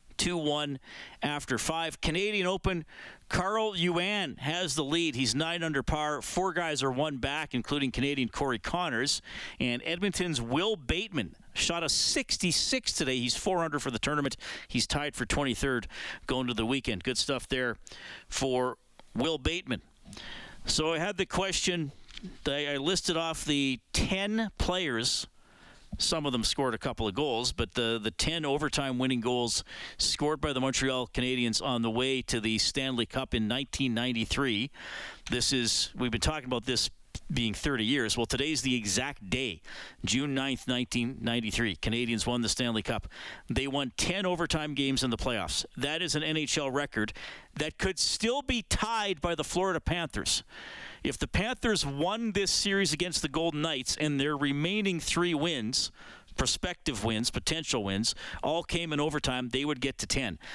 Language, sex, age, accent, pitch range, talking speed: English, male, 40-59, American, 125-170 Hz, 160 wpm